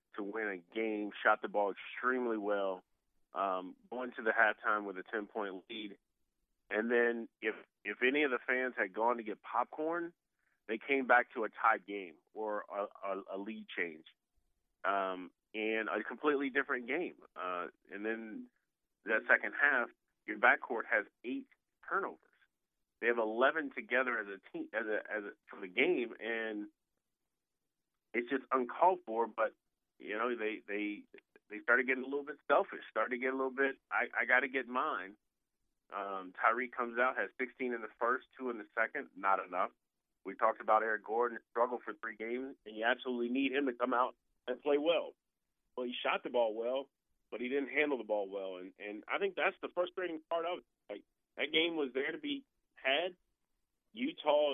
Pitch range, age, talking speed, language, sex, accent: 110-150 Hz, 30-49, 185 wpm, English, male, American